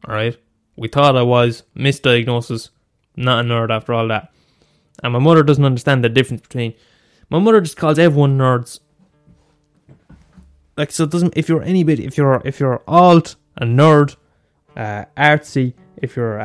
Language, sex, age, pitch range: English, male, 20-39, 120-170 Hz